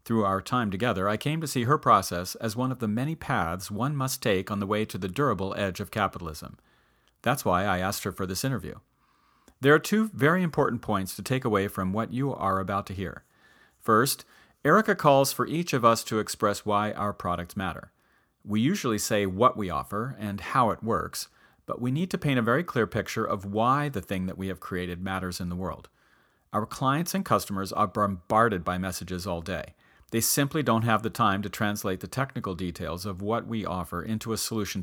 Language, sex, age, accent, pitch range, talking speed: English, male, 40-59, American, 95-125 Hz, 215 wpm